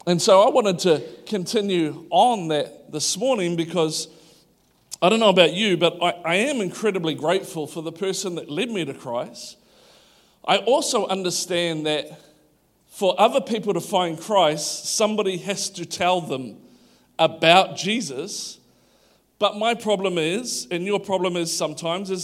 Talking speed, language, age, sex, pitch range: 155 wpm, English, 40-59, male, 155-190 Hz